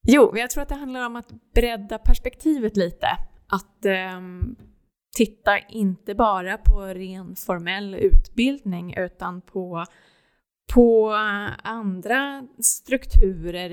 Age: 20-39